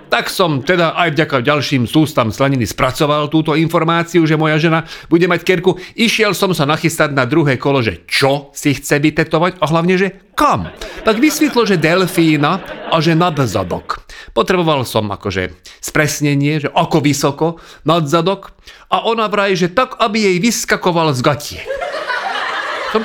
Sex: male